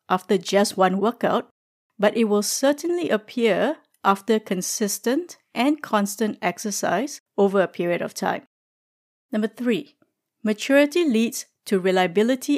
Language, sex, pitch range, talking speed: English, female, 195-245 Hz, 120 wpm